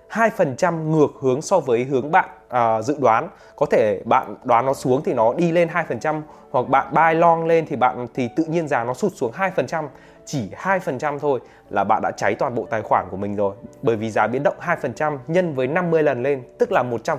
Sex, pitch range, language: male, 125-170 Hz, Vietnamese